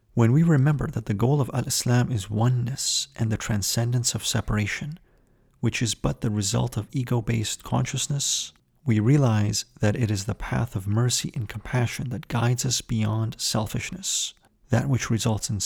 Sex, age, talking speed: male, 40-59, 165 wpm